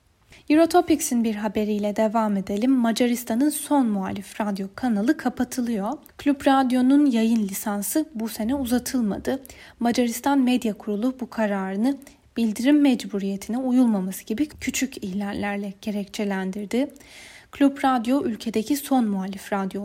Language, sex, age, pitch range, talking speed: Turkish, female, 10-29, 210-265 Hz, 110 wpm